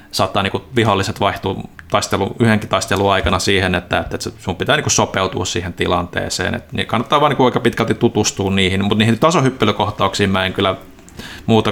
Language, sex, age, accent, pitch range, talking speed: Finnish, male, 30-49, native, 95-110 Hz, 175 wpm